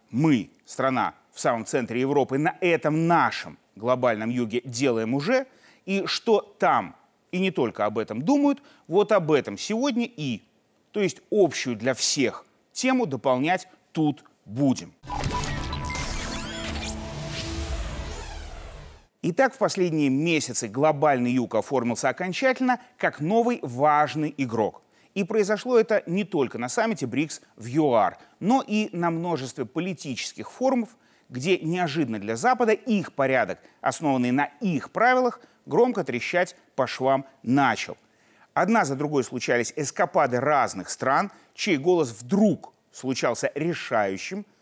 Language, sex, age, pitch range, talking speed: Russian, male, 30-49, 125-200 Hz, 120 wpm